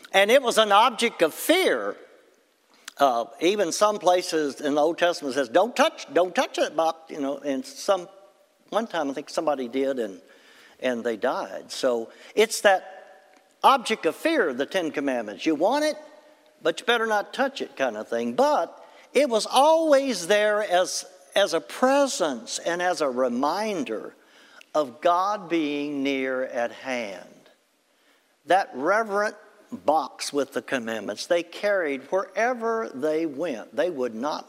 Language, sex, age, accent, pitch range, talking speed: English, male, 60-79, American, 145-235 Hz, 155 wpm